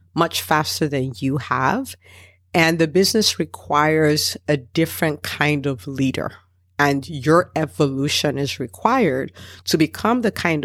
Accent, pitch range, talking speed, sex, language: American, 125-165 Hz, 130 wpm, female, English